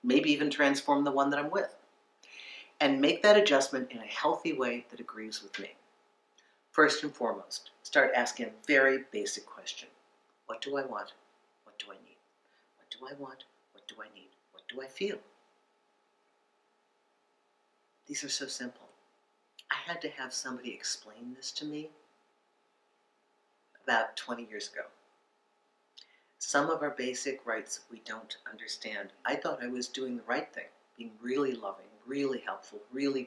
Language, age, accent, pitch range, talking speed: English, 50-69, American, 125-145 Hz, 160 wpm